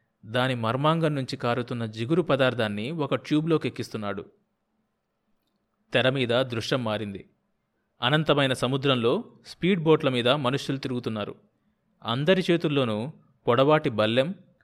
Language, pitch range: Telugu, 120-150 Hz